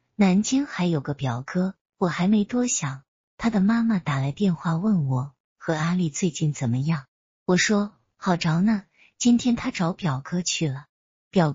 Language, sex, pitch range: Chinese, female, 140-185 Hz